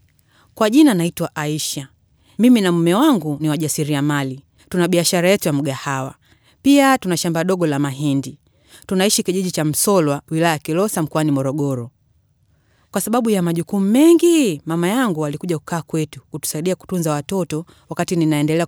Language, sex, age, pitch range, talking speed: Swahili, female, 30-49, 145-200 Hz, 150 wpm